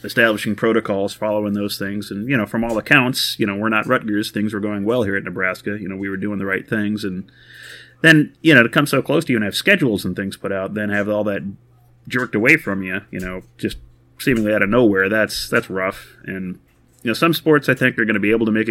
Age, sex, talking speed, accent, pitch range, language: 30-49, male, 255 wpm, American, 100-120 Hz, English